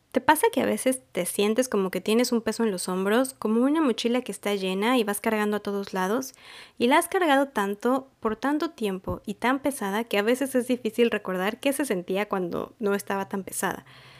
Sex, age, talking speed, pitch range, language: female, 20-39, 220 wpm, 195-240 Hz, Spanish